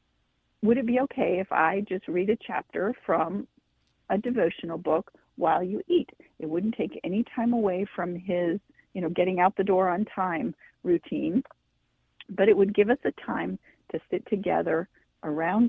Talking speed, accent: 170 wpm, American